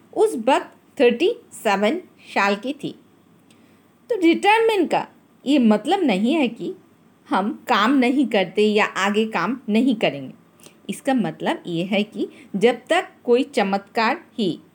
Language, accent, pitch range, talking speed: Hindi, native, 205-310 Hz, 140 wpm